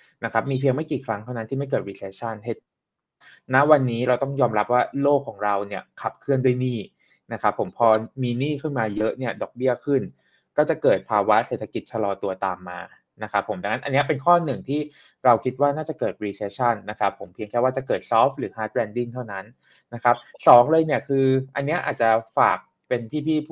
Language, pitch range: Thai, 110-140 Hz